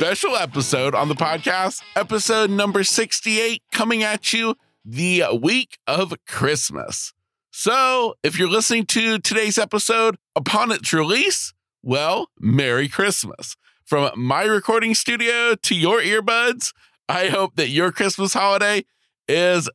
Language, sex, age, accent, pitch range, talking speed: English, male, 40-59, American, 165-225 Hz, 130 wpm